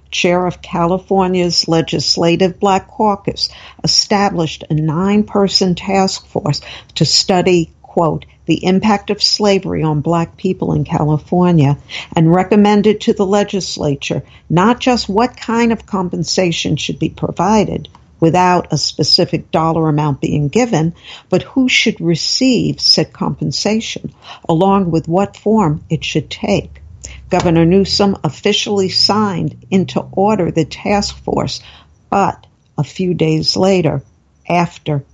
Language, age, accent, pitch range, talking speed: English, 60-79, American, 160-200 Hz, 125 wpm